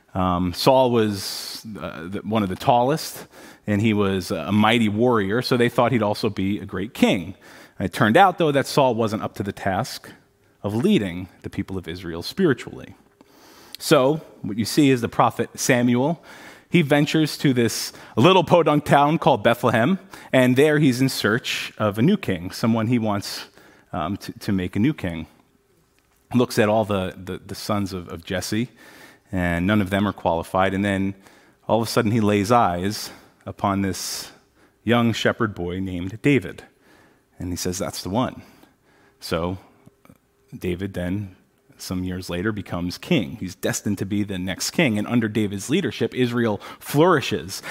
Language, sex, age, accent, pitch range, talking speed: English, male, 30-49, American, 95-125 Hz, 175 wpm